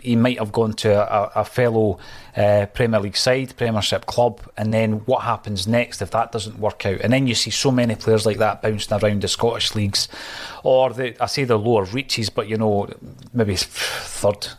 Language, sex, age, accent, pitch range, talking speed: English, male, 30-49, British, 110-130 Hz, 205 wpm